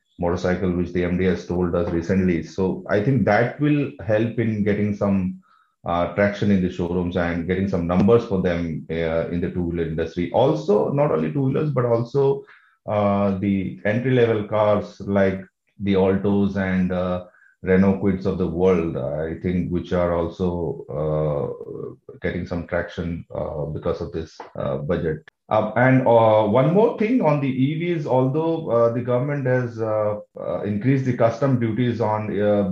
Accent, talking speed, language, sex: Indian, 165 wpm, English, male